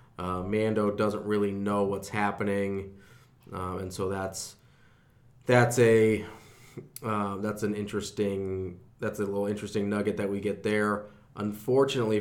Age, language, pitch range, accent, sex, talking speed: 20-39, English, 100-120 Hz, American, male, 135 wpm